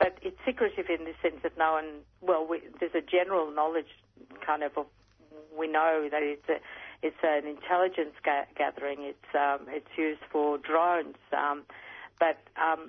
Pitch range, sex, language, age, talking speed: 140-165 Hz, female, English, 50-69, 170 wpm